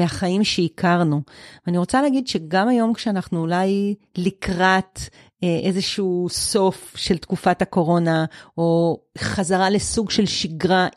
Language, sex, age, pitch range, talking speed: Hebrew, female, 40-59, 170-200 Hz, 110 wpm